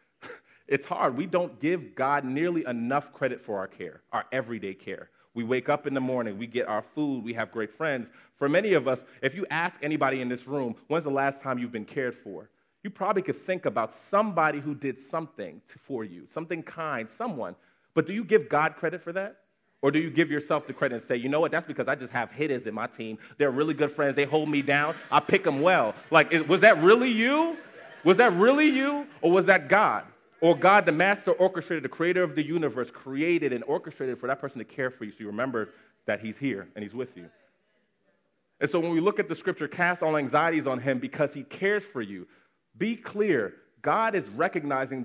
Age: 30-49